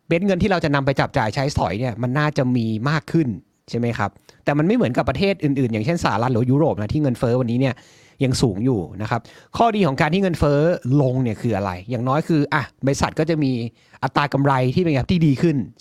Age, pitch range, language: 30-49, 120-160 Hz, Thai